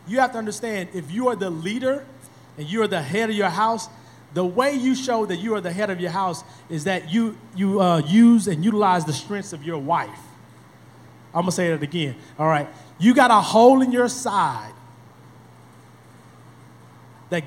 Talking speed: 200 wpm